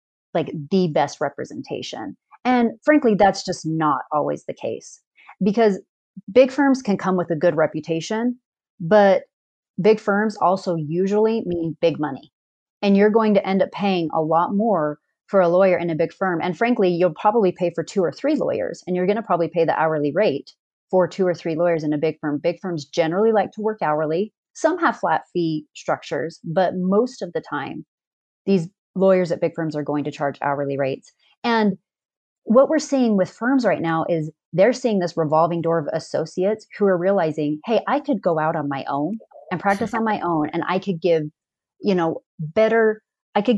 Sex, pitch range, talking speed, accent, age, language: female, 160-215 Hz, 195 wpm, American, 30-49, English